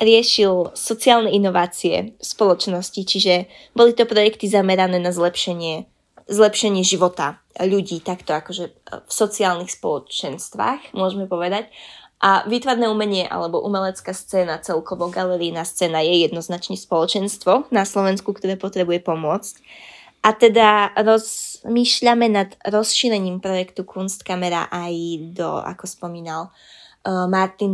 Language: Slovak